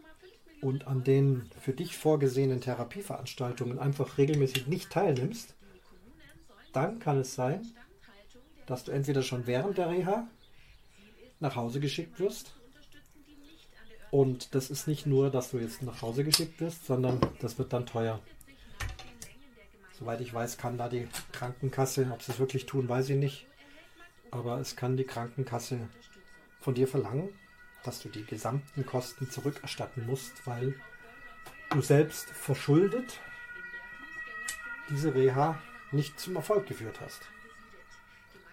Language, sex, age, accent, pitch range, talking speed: German, male, 40-59, German, 125-165 Hz, 130 wpm